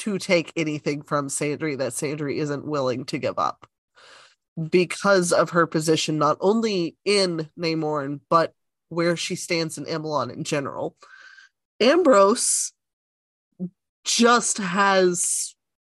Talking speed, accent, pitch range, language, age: 115 wpm, American, 155-200 Hz, English, 30-49